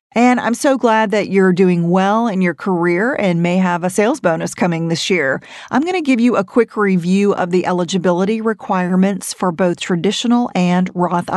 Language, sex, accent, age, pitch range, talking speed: English, female, American, 40-59, 180-230 Hz, 190 wpm